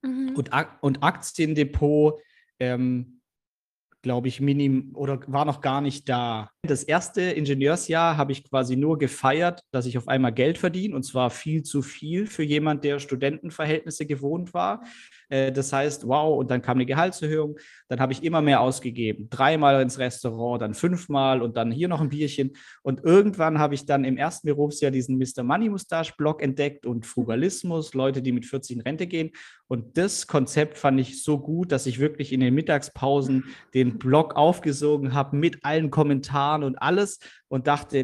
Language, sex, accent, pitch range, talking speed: German, male, German, 130-150 Hz, 175 wpm